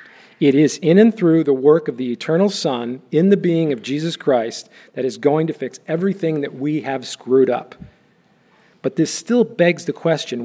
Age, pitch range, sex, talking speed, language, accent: 50-69, 145-210 Hz, male, 195 wpm, English, American